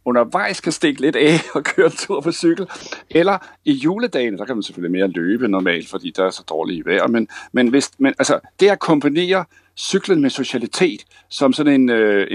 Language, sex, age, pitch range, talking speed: Danish, male, 60-79, 100-155 Hz, 200 wpm